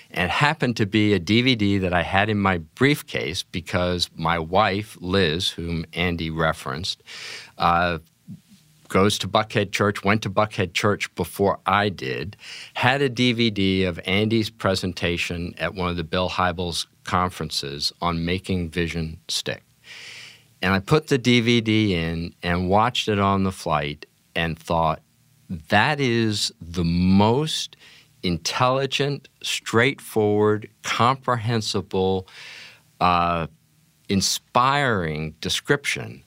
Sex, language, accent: male, English, American